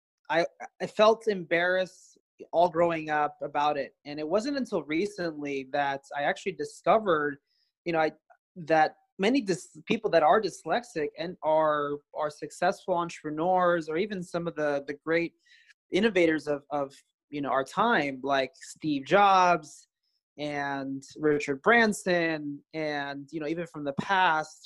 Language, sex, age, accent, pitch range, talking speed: English, male, 30-49, American, 150-190 Hz, 145 wpm